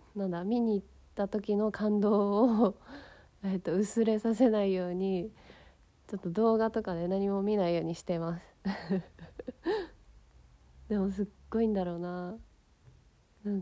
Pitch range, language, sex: 170-205 Hz, Japanese, female